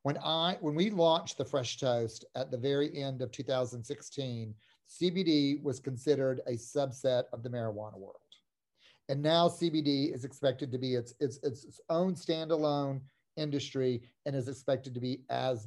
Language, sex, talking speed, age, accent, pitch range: English, male, 160 wpm, 40-59, American, 125-155 Hz